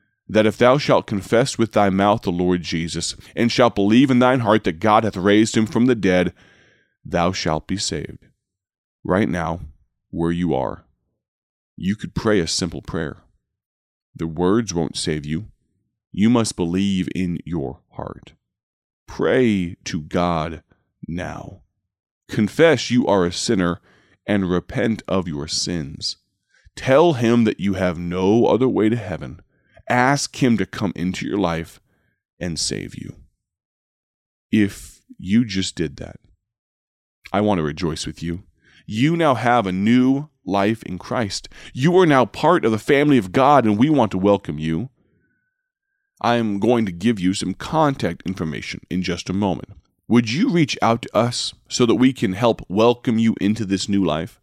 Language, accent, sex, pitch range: English, American, male, 90-120 Hz